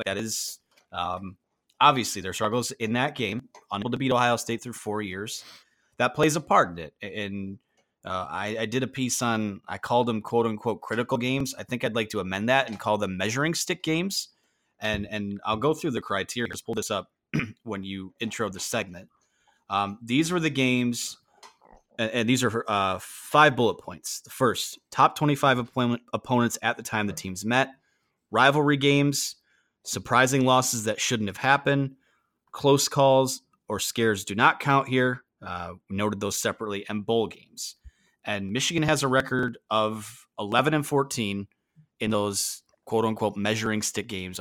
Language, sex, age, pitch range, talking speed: English, male, 30-49, 105-130 Hz, 175 wpm